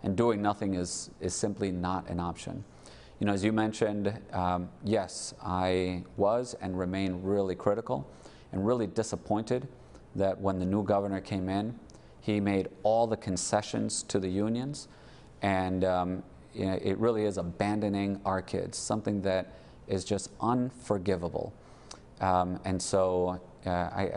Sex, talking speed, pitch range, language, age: male, 150 wpm, 90-105 Hz, English, 30-49